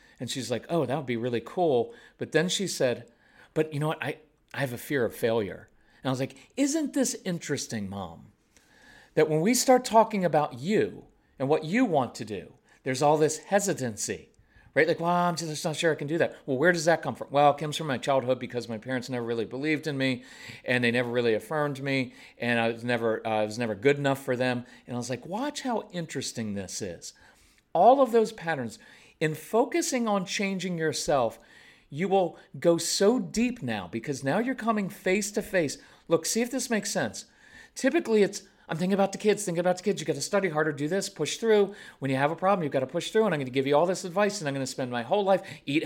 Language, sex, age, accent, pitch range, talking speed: English, male, 40-59, American, 135-200 Hz, 240 wpm